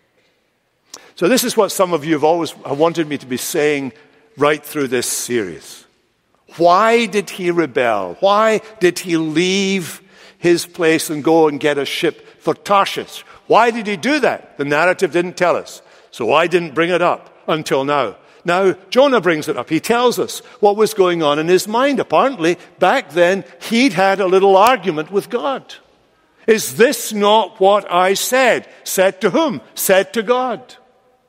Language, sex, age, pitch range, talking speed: English, male, 60-79, 160-220 Hz, 175 wpm